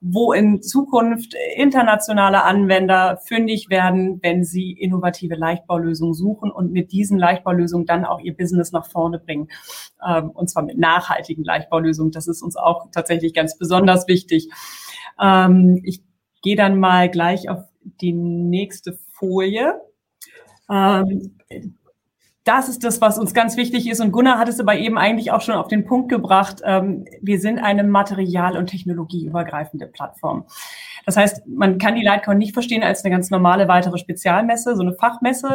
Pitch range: 175-210 Hz